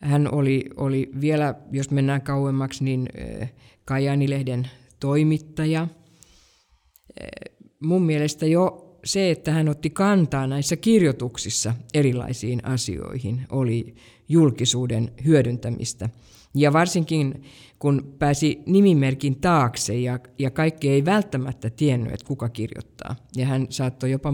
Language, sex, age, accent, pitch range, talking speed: Finnish, female, 50-69, native, 125-160 Hz, 115 wpm